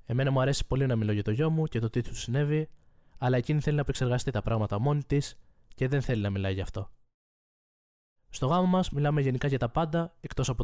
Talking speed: 230 wpm